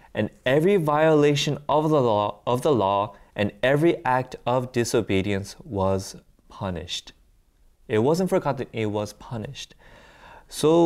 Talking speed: 125 wpm